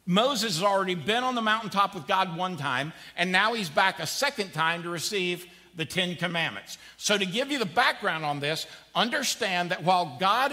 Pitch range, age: 170-225 Hz, 50-69